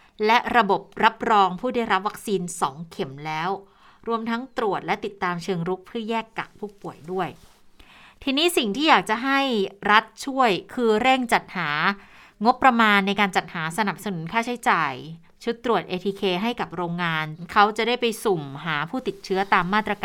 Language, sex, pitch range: Thai, female, 175-225 Hz